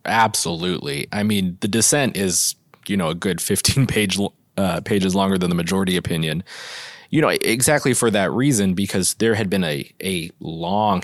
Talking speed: 175 wpm